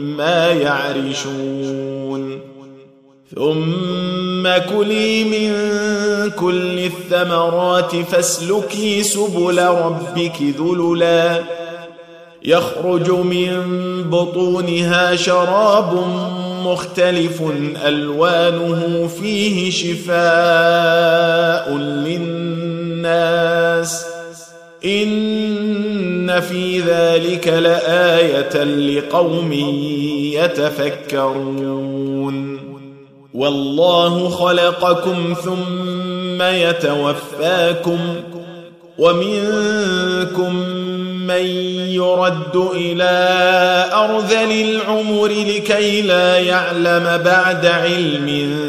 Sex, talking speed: male, 50 wpm